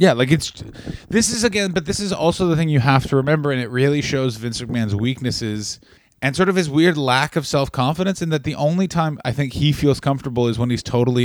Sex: male